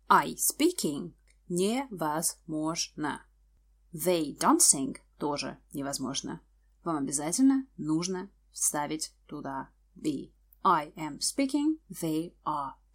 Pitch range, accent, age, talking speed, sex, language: 160-265 Hz, native, 20-39, 85 wpm, female, Russian